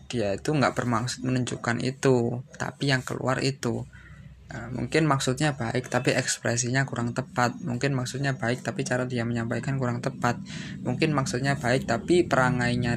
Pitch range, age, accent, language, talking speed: 120-145 Hz, 20-39, native, Indonesian, 145 wpm